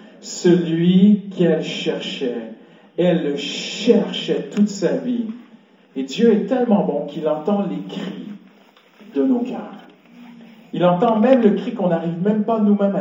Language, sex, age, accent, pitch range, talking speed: French, male, 50-69, French, 200-240 Hz, 145 wpm